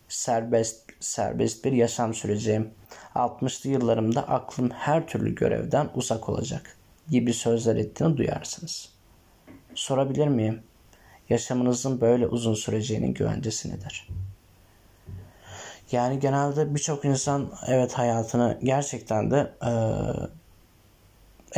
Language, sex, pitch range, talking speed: Turkish, male, 110-130 Hz, 95 wpm